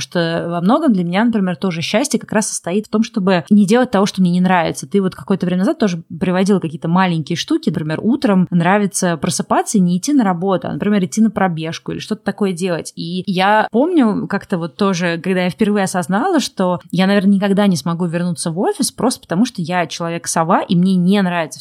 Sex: female